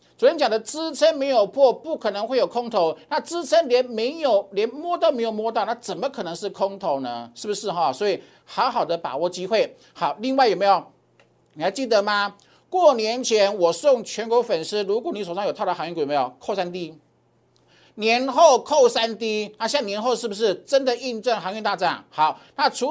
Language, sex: Chinese, male